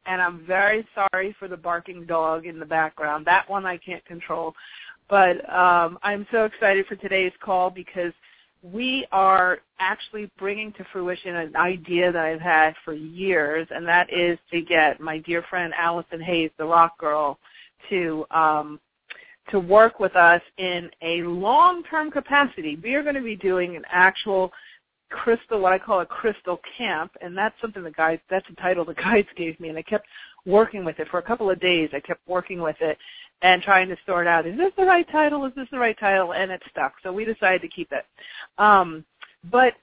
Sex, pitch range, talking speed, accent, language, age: female, 170-205 Hz, 195 wpm, American, English, 40-59